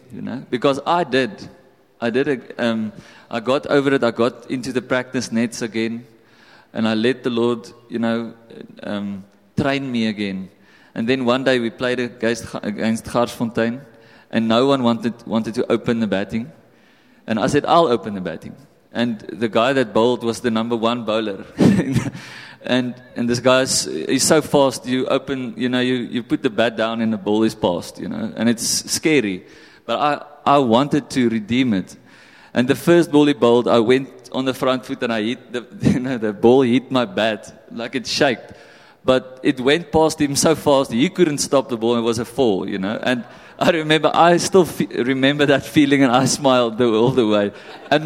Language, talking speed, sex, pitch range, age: English, 200 wpm, male, 115-140 Hz, 30-49